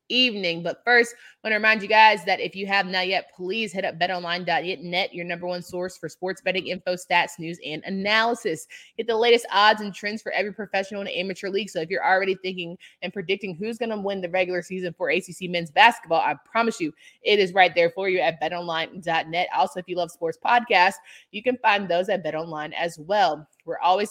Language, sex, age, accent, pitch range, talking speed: English, female, 20-39, American, 175-210 Hz, 220 wpm